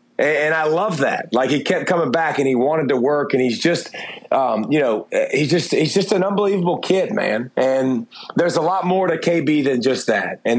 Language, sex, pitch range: English, male, 130-165 Hz